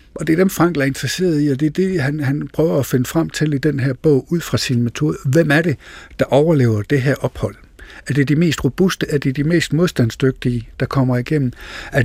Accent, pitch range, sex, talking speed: native, 125-155 Hz, male, 245 wpm